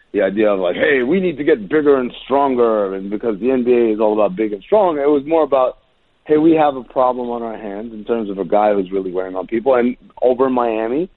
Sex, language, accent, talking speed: male, English, American, 260 wpm